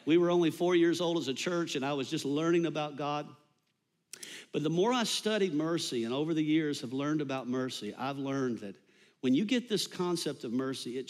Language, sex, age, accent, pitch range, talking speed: English, male, 50-69, American, 130-170 Hz, 220 wpm